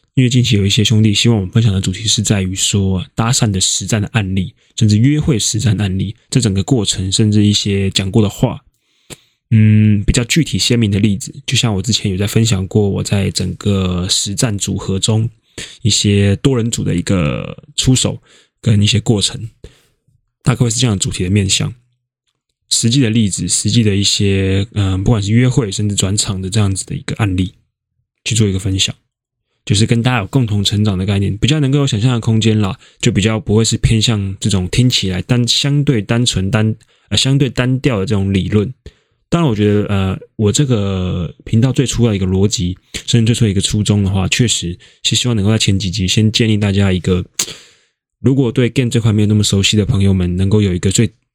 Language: Chinese